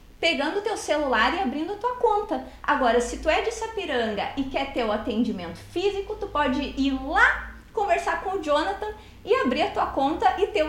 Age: 30-49